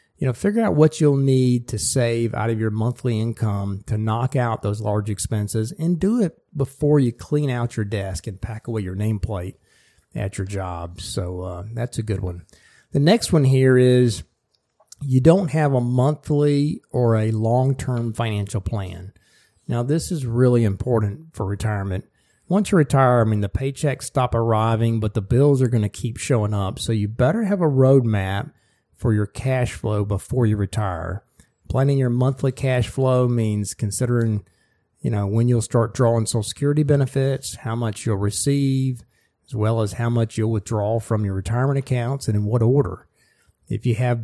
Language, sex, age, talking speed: English, male, 40-59, 180 wpm